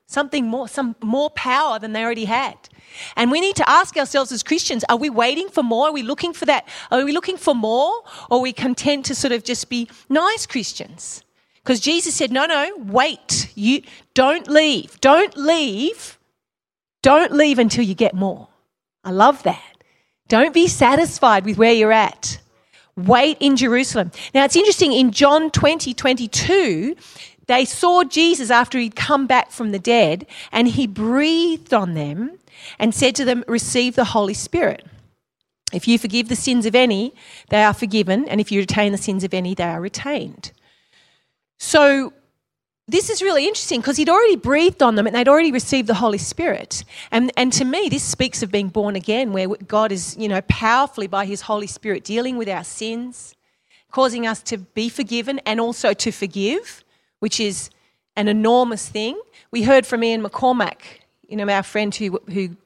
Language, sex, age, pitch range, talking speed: English, female, 40-59, 215-285 Hz, 185 wpm